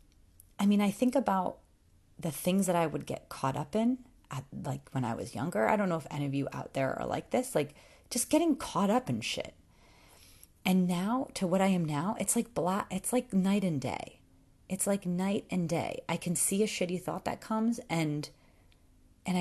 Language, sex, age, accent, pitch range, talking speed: English, female, 30-49, American, 145-220 Hz, 210 wpm